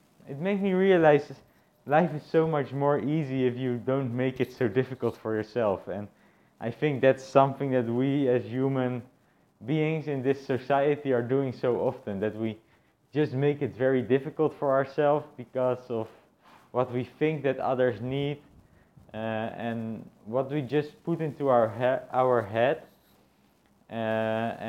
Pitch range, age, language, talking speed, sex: 120-145 Hz, 20-39, English, 160 wpm, male